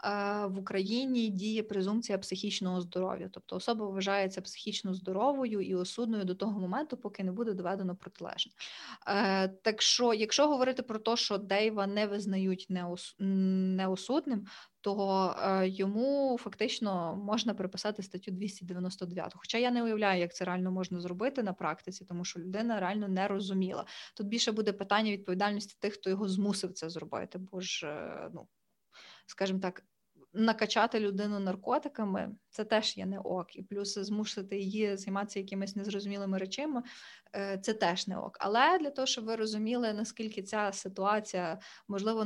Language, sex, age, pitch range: Ukrainian, female, 20-39, 190-215 Hz